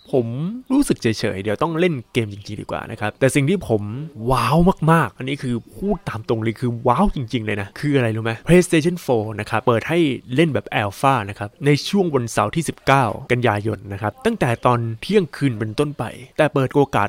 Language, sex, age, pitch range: Thai, male, 20-39, 110-145 Hz